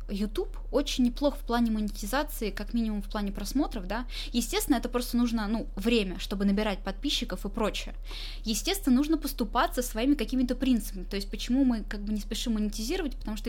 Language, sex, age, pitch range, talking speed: Russian, female, 20-39, 205-260 Hz, 180 wpm